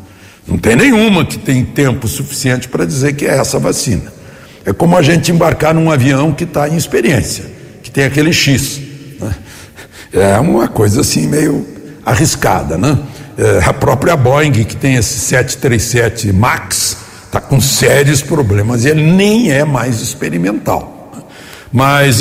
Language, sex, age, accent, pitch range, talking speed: Portuguese, male, 60-79, Brazilian, 120-165 Hz, 150 wpm